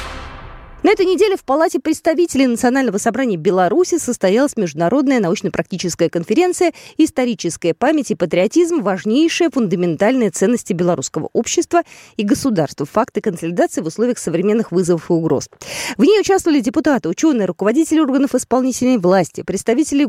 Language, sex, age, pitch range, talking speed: Russian, female, 20-39, 195-295 Hz, 125 wpm